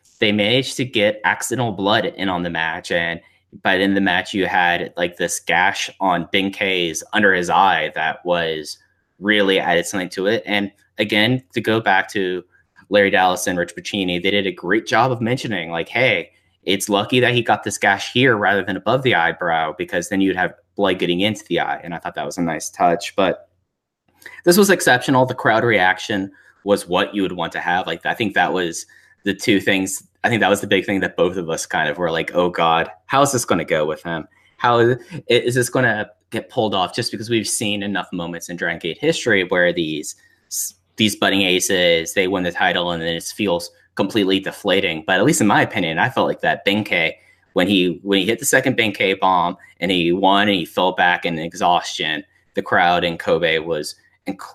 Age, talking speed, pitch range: 20-39, 220 wpm, 90-110 Hz